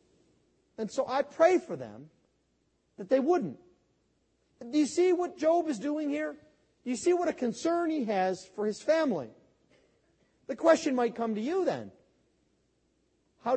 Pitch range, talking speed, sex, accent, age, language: 220-310 Hz, 160 wpm, male, American, 40-59, English